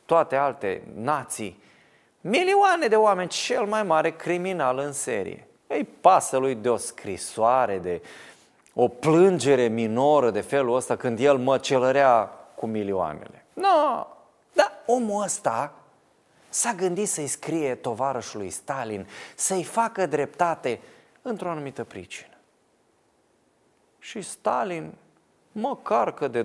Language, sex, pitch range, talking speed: Romanian, male, 110-185 Hz, 115 wpm